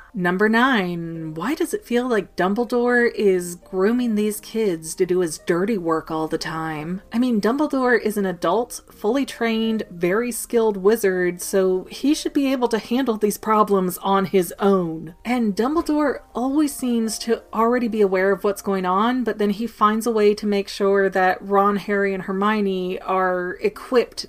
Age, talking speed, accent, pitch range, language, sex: 30-49, 175 wpm, American, 185-235 Hz, English, female